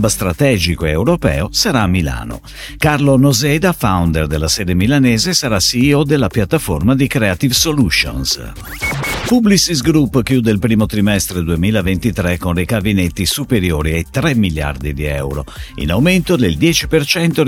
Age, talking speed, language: 50-69, 130 wpm, Italian